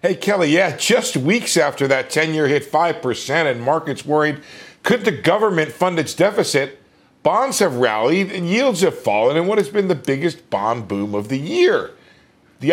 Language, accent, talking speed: English, American, 185 wpm